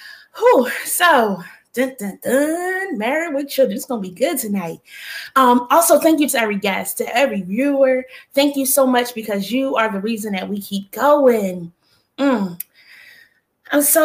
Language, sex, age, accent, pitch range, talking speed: English, female, 20-39, American, 225-330 Hz, 155 wpm